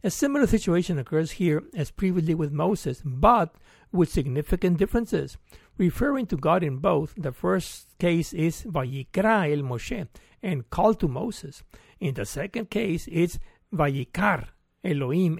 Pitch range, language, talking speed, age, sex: 150-190 Hz, English, 140 wpm, 60-79, male